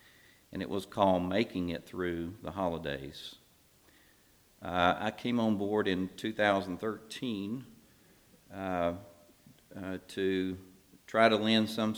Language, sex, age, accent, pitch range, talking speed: English, male, 50-69, American, 90-115 Hz, 115 wpm